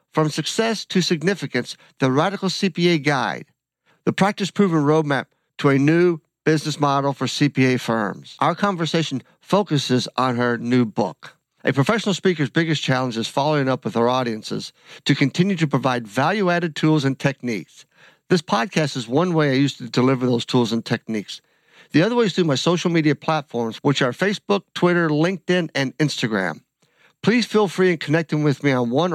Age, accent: 60-79, American